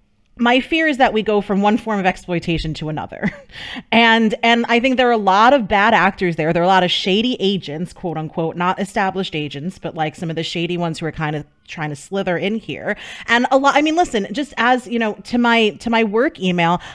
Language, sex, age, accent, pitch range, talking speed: English, female, 30-49, American, 185-245 Hz, 245 wpm